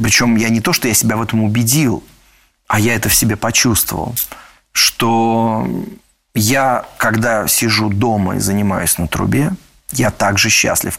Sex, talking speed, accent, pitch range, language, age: male, 155 wpm, native, 105-125 Hz, Russian, 30-49